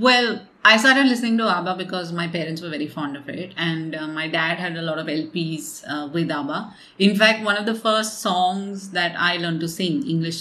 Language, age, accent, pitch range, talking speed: English, 30-49, Indian, 160-200 Hz, 225 wpm